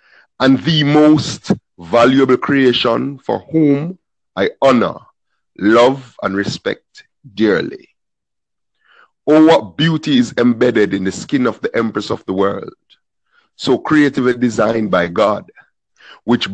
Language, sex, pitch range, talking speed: English, male, 115-155 Hz, 120 wpm